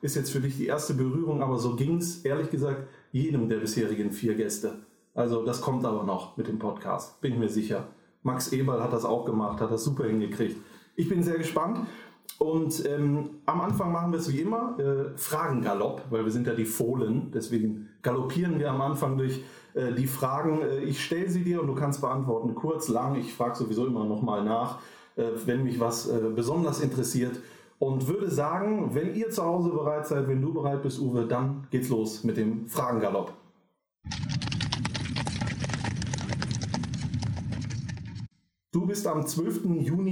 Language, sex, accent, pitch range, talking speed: German, male, German, 120-155 Hz, 180 wpm